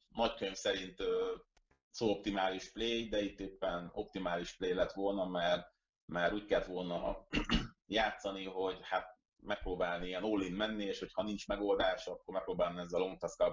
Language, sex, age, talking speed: Hungarian, male, 30-49, 150 wpm